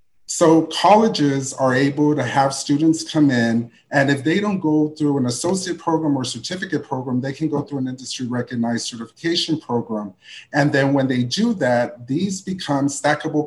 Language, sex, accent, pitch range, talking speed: English, male, American, 120-150 Hz, 175 wpm